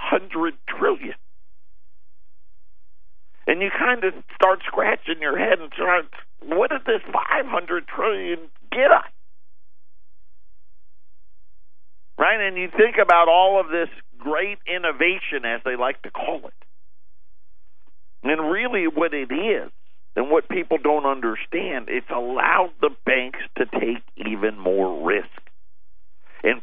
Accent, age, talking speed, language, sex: American, 50-69, 125 wpm, English, male